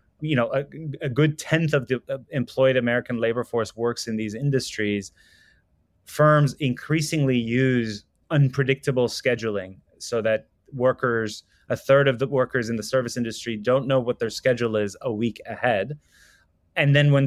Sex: male